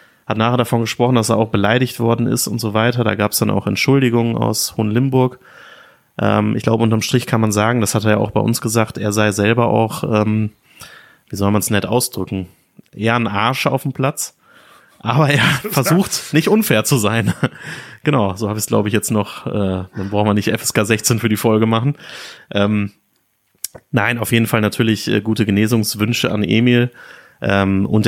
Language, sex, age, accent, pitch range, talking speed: German, male, 30-49, German, 105-120 Hz, 200 wpm